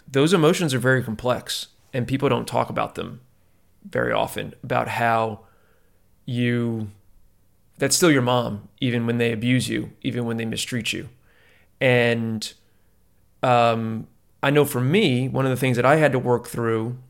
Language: English